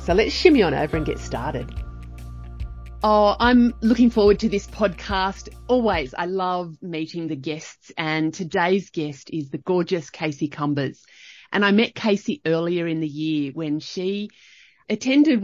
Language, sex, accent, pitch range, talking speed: English, female, Australian, 155-220 Hz, 155 wpm